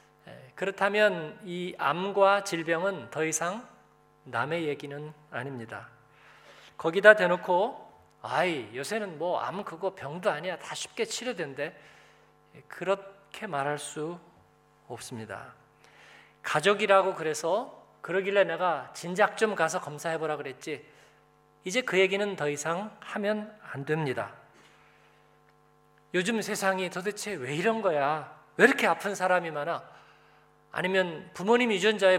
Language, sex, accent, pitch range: Korean, male, native, 165-210 Hz